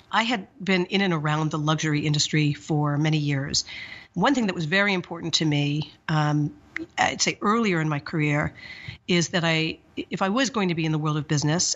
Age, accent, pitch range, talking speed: 50-69, American, 155-180 Hz, 210 wpm